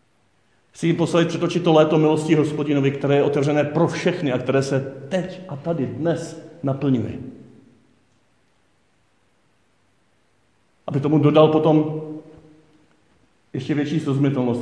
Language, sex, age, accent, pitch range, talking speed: Czech, male, 50-69, native, 115-155 Hz, 115 wpm